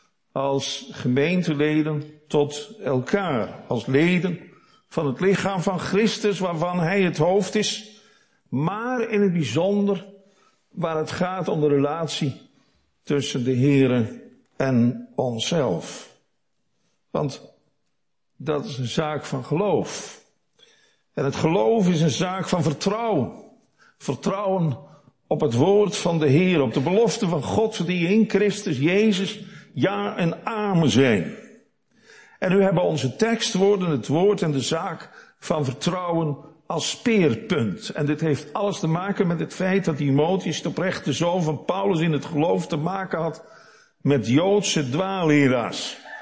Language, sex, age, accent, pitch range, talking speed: Dutch, male, 50-69, Dutch, 150-195 Hz, 140 wpm